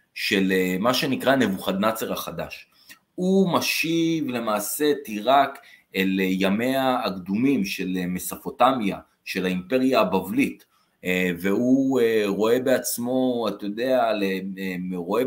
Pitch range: 90-110 Hz